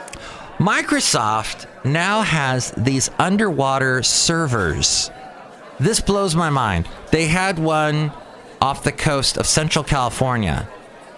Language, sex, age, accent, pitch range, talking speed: English, male, 30-49, American, 130-175 Hz, 100 wpm